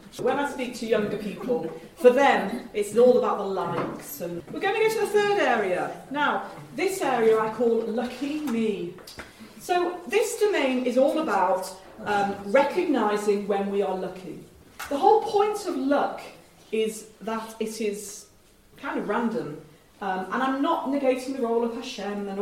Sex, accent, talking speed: female, British, 165 wpm